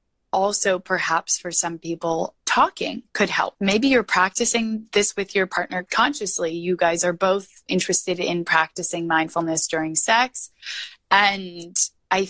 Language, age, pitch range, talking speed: English, 20-39, 175-225 Hz, 135 wpm